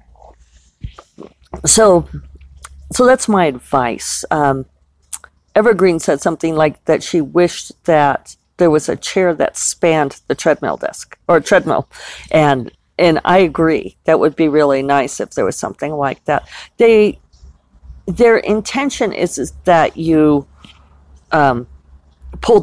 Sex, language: female, English